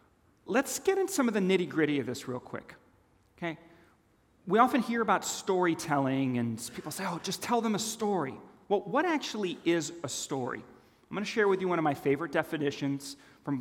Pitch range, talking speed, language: 140-190 Hz, 200 wpm, English